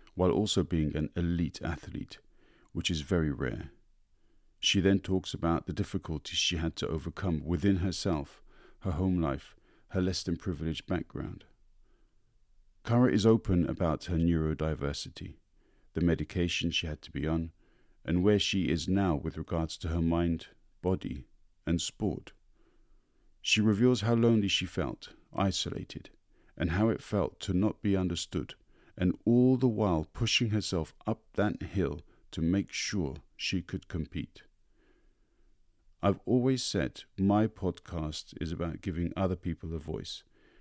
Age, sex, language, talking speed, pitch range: 50-69, male, English, 140 wpm, 80-100 Hz